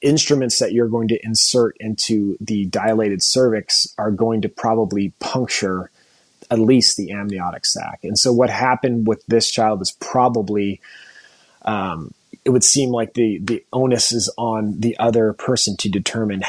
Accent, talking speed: American, 160 wpm